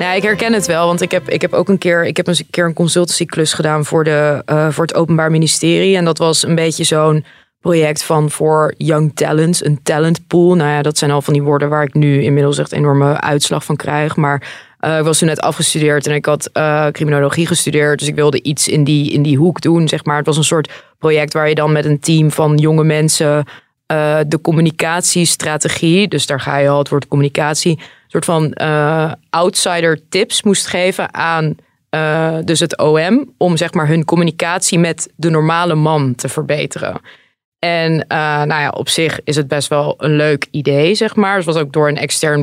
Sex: female